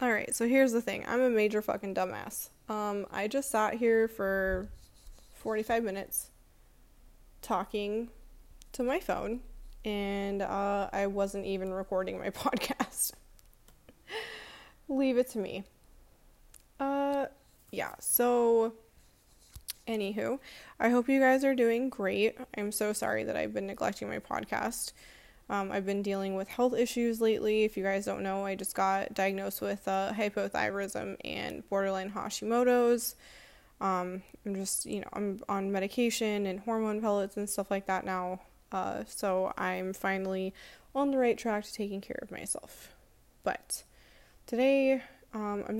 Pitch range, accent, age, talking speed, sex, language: 195-235 Hz, American, 20-39, 145 wpm, female, English